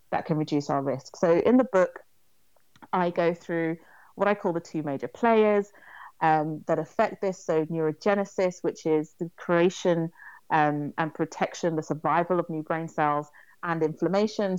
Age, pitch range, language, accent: 30-49, 160-195 Hz, English, British